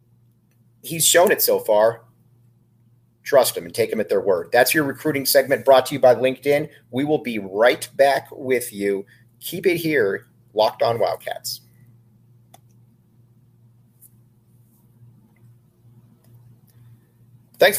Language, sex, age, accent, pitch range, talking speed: English, male, 40-59, American, 120-165 Hz, 120 wpm